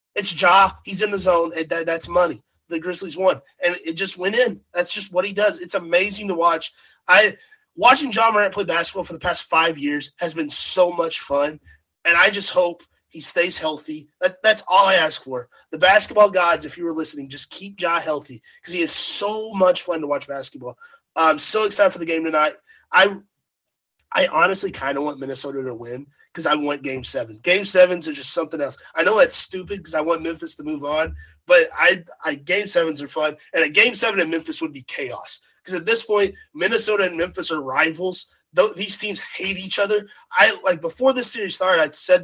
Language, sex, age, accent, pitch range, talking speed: English, male, 30-49, American, 155-200 Hz, 215 wpm